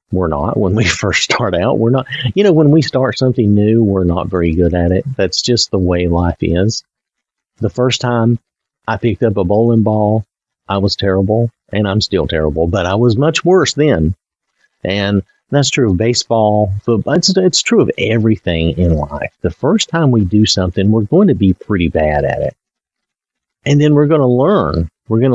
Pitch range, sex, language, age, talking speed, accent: 90-125 Hz, male, English, 50-69, 200 wpm, American